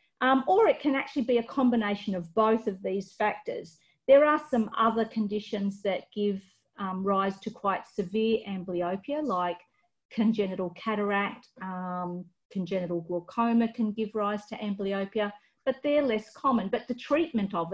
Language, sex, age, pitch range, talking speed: English, female, 40-59, 195-245 Hz, 150 wpm